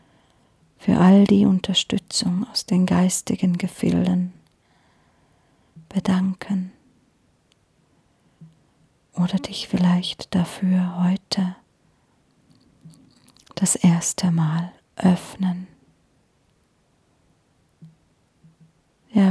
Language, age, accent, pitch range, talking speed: German, 40-59, German, 165-190 Hz, 60 wpm